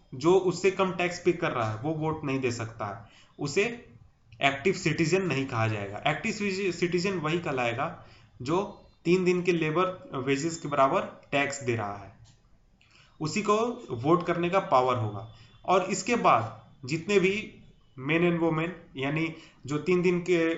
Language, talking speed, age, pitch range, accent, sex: English, 165 wpm, 20-39, 130-175 Hz, Indian, male